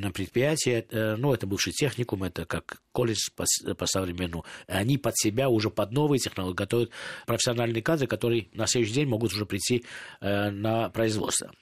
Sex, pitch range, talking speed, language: male, 100-120 Hz, 160 wpm, Russian